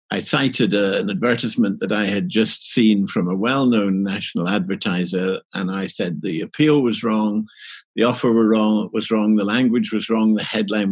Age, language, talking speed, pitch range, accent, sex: 60-79, English, 175 wpm, 95-120 Hz, British, male